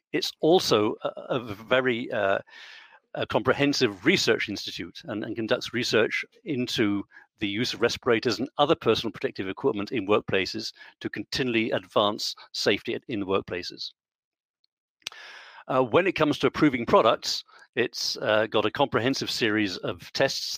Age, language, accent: 50-69, English, British